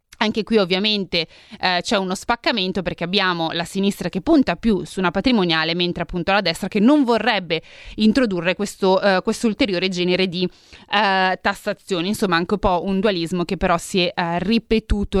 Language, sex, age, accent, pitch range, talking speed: Italian, female, 20-39, native, 175-225 Hz, 175 wpm